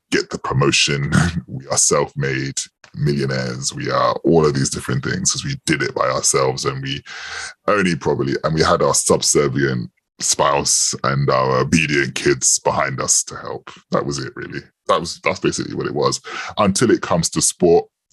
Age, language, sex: 20-39, English, female